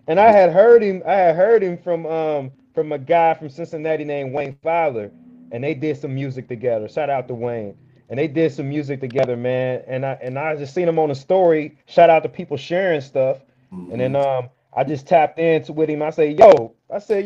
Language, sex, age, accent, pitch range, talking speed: English, male, 30-49, American, 145-195 Hz, 230 wpm